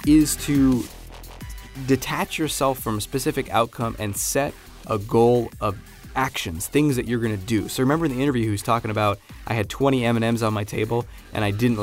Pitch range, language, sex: 105-130 Hz, English, male